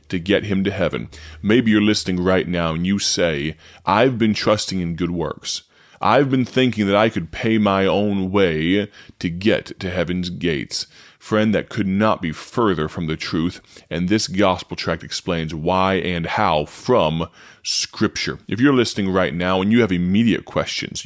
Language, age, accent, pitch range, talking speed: English, 30-49, American, 90-110 Hz, 180 wpm